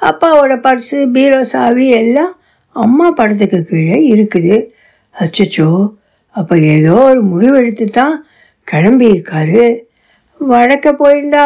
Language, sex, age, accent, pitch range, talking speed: Tamil, female, 60-79, native, 225-290 Hz, 85 wpm